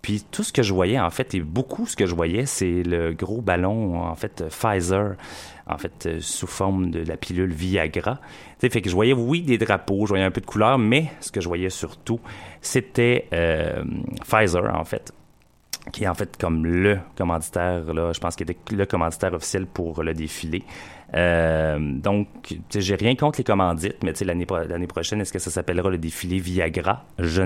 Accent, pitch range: French, 85-100 Hz